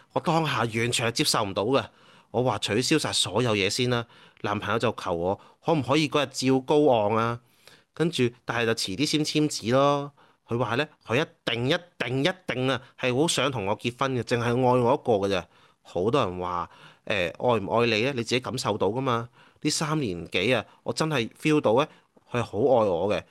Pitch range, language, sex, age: 110-140 Hz, Chinese, male, 30-49